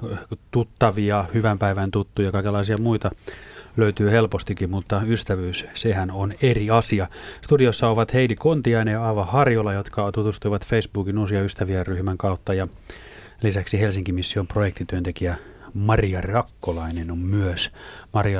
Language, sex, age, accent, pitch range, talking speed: Finnish, male, 30-49, native, 95-110 Hz, 125 wpm